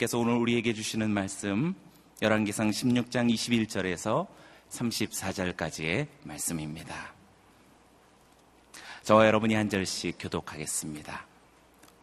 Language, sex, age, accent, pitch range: Korean, male, 30-49, native, 100-120 Hz